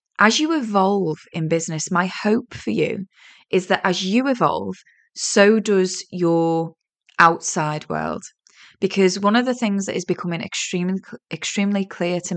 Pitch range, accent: 170-215 Hz, British